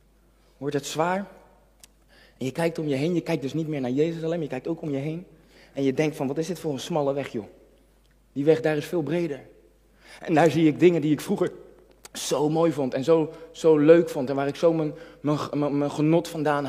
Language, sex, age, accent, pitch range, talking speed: Dutch, male, 20-39, Dutch, 150-185 Hz, 240 wpm